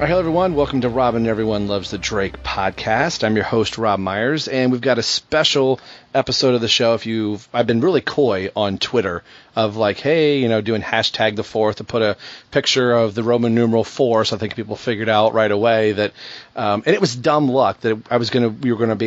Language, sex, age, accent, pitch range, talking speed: English, male, 40-59, American, 110-130 Hz, 240 wpm